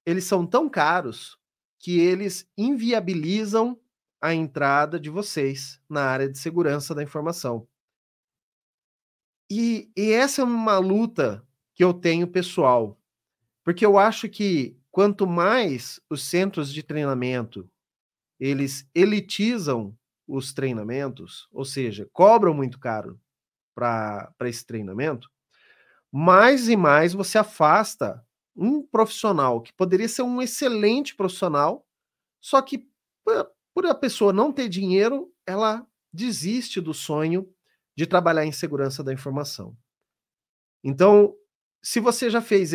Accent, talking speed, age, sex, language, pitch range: Brazilian, 120 wpm, 30-49, male, Portuguese, 135-205 Hz